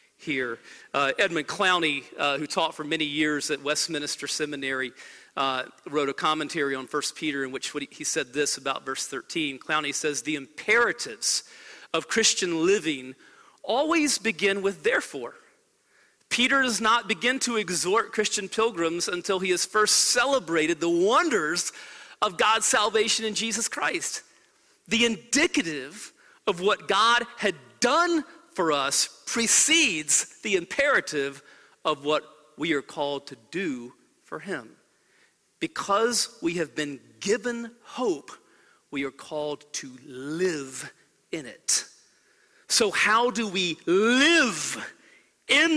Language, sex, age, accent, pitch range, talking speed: English, male, 40-59, American, 145-235 Hz, 130 wpm